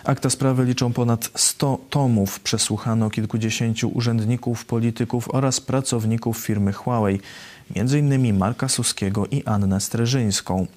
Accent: native